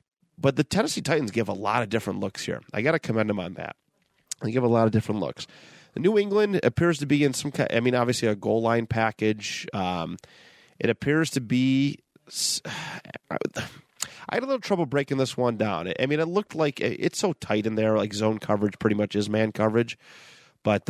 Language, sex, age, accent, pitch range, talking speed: English, male, 30-49, American, 105-140 Hz, 210 wpm